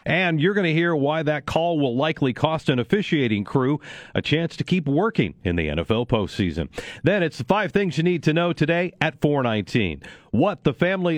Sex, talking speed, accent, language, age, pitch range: male, 205 wpm, American, English, 40-59, 110-160 Hz